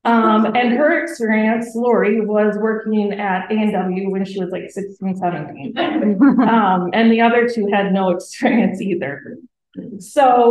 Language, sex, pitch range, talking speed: English, female, 195-245 Hz, 145 wpm